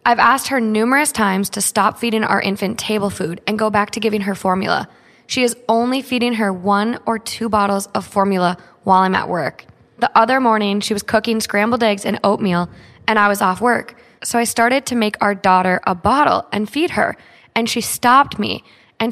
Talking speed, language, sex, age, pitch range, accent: 205 wpm, English, female, 20-39, 185-225 Hz, American